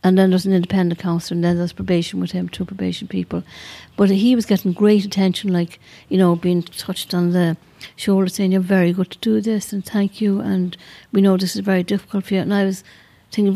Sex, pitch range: female, 175-200 Hz